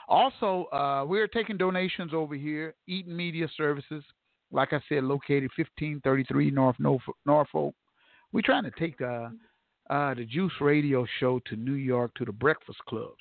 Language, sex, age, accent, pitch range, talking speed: English, male, 50-69, American, 120-150 Hz, 155 wpm